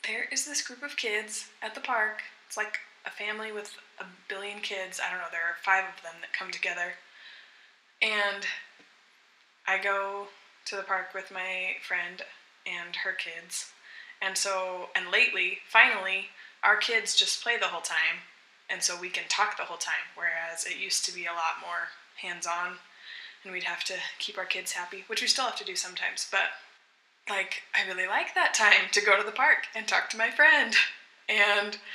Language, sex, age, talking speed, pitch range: English, female, 20-39, 190 wpm, 190-245 Hz